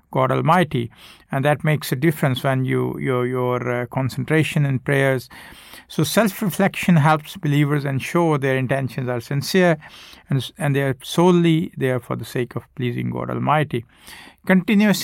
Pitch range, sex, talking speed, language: 125-155 Hz, male, 150 wpm, English